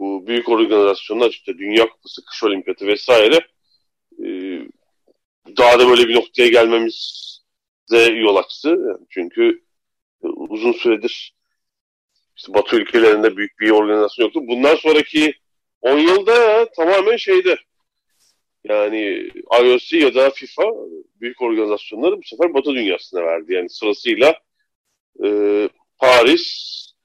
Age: 40-59